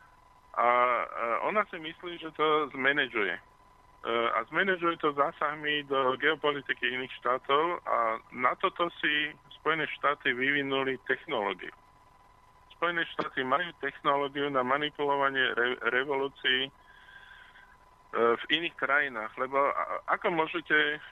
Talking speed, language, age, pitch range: 100 wpm, Slovak, 20-39, 130-155 Hz